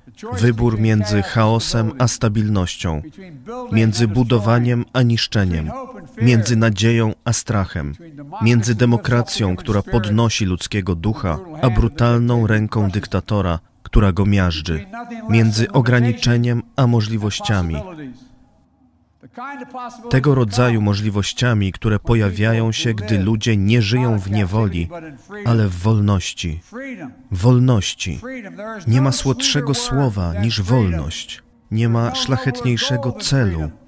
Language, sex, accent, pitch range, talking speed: Polish, male, native, 105-125 Hz, 100 wpm